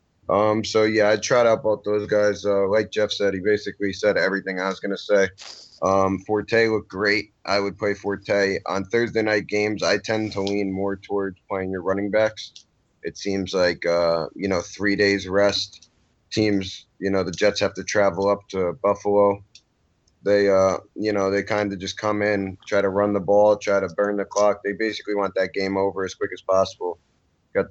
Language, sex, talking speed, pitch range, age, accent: English, male, 205 wpm, 95-105 Hz, 20-39, American